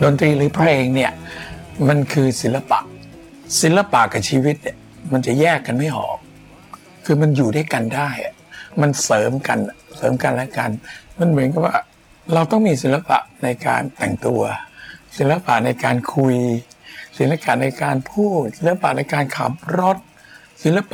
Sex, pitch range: male, 130-170 Hz